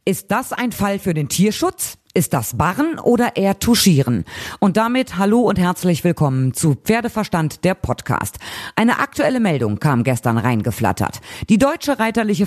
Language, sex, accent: German, female, German